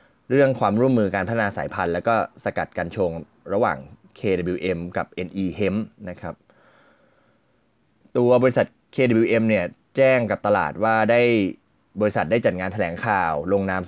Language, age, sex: Thai, 20-39, male